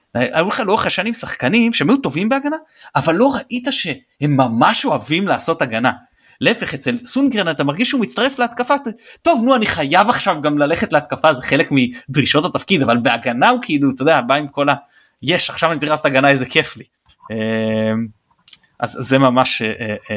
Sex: male